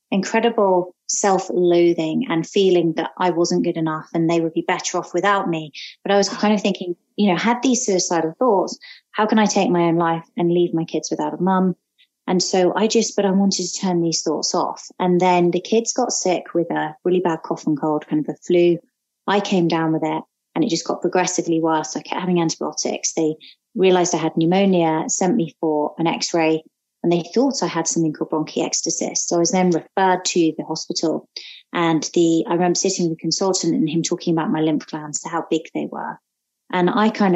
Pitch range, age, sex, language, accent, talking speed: 165-195 Hz, 20-39, female, English, British, 215 wpm